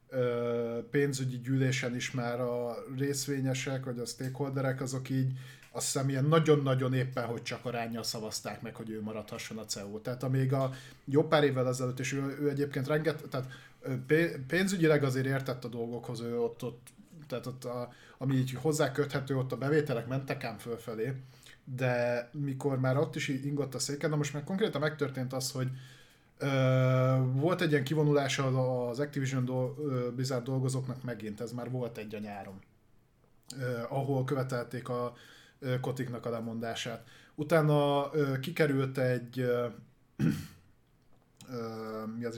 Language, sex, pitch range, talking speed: Hungarian, male, 120-140 Hz, 145 wpm